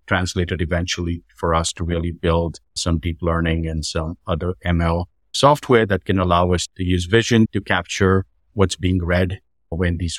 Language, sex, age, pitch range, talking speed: English, male, 50-69, 85-100 Hz, 170 wpm